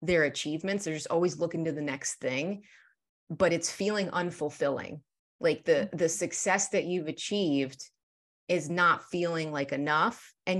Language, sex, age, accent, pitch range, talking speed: English, female, 30-49, American, 150-180 Hz, 155 wpm